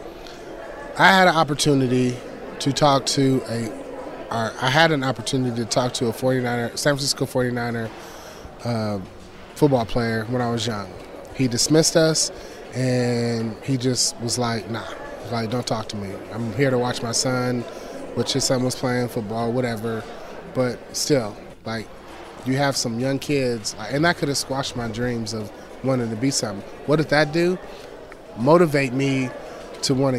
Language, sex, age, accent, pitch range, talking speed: English, male, 20-39, American, 120-150 Hz, 165 wpm